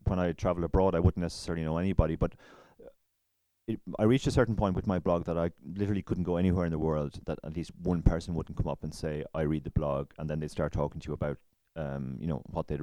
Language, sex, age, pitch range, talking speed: English, male, 30-49, 80-95 Hz, 260 wpm